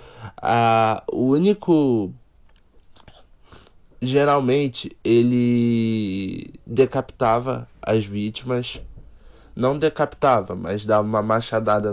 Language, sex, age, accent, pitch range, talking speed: Portuguese, male, 20-39, Brazilian, 110-130 Hz, 65 wpm